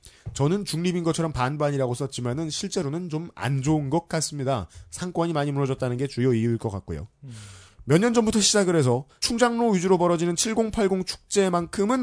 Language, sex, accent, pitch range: Korean, male, native, 125-195 Hz